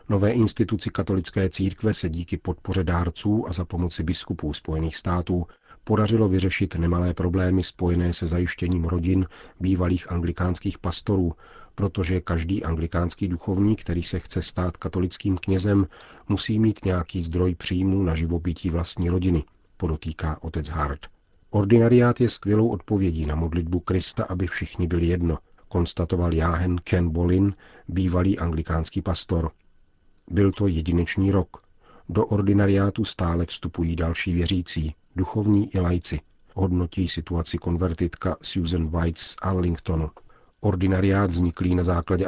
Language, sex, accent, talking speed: Czech, male, native, 125 wpm